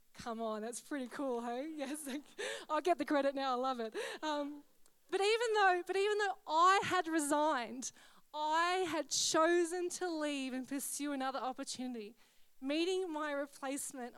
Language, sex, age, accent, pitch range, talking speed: English, female, 20-39, Australian, 265-350 Hz, 150 wpm